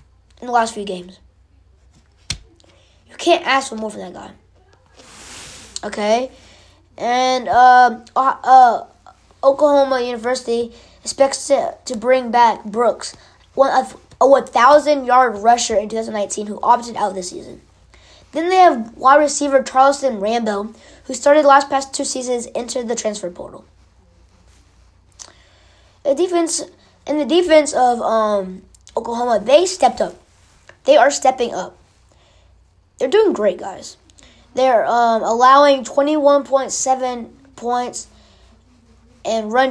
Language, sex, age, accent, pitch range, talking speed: English, female, 20-39, American, 180-270 Hz, 125 wpm